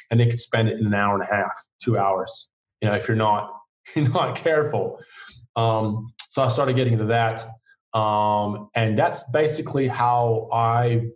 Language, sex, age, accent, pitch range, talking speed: English, male, 20-39, American, 110-125 Hz, 175 wpm